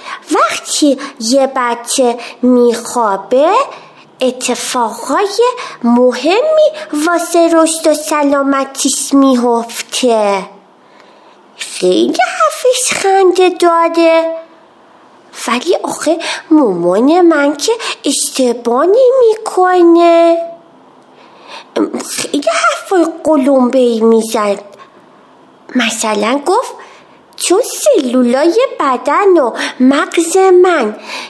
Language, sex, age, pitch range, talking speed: Persian, female, 30-49, 265-350 Hz, 65 wpm